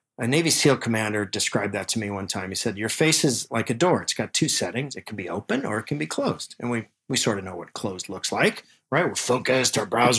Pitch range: 115-165 Hz